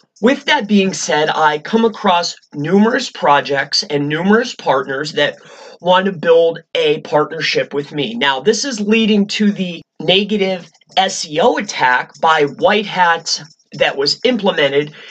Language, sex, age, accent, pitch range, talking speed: English, male, 30-49, American, 160-225 Hz, 140 wpm